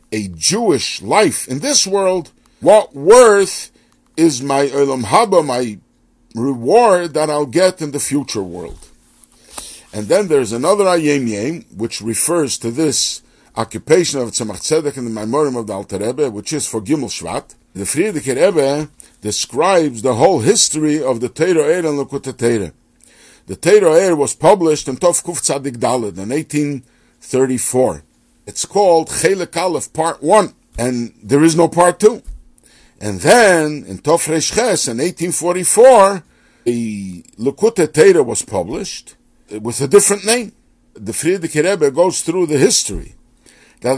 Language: English